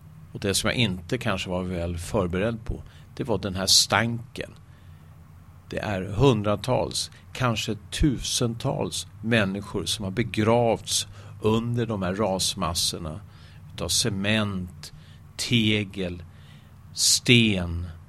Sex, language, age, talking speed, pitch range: male, Swedish, 50-69, 105 wpm, 90-110 Hz